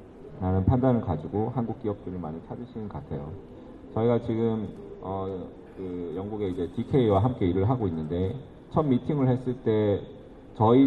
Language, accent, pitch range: Korean, native, 90-125 Hz